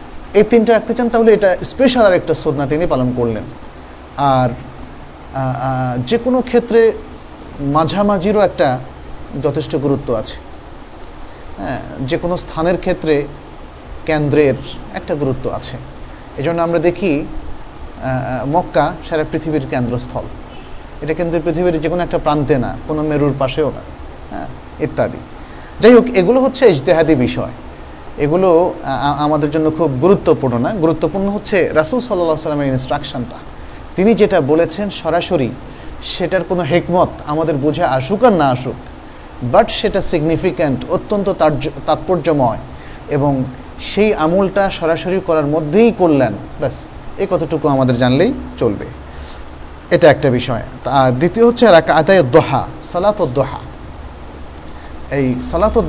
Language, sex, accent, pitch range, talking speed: Bengali, male, native, 130-180 Hz, 120 wpm